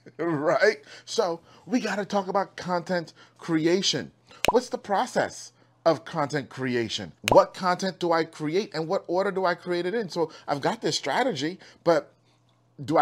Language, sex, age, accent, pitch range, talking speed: English, male, 30-49, American, 125-185 Hz, 160 wpm